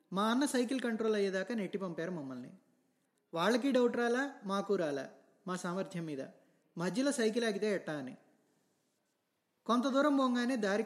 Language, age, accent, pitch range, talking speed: Telugu, 20-39, native, 185-240 Hz, 140 wpm